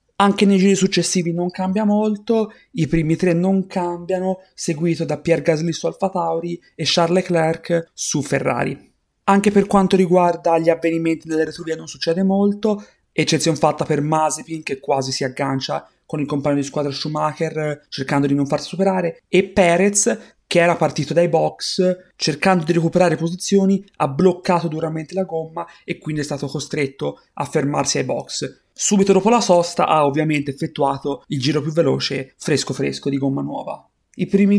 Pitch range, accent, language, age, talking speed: 150-180 Hz, native, Italian, 30-49, 170 wpm